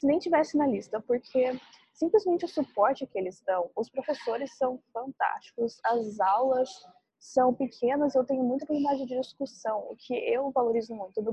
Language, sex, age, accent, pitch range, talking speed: Portuguese, female, 20-39, Brazilian, 225-275 Hz, 165 wpm